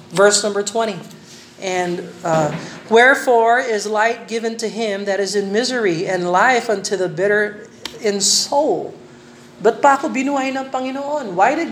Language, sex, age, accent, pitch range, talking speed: Filipino, male, 40-59, American, 180-245 Hz, 130 wpm